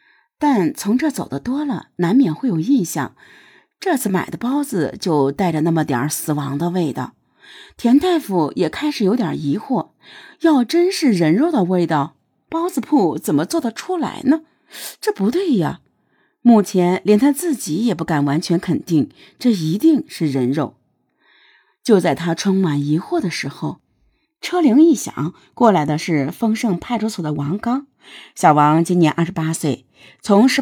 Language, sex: Chinese, female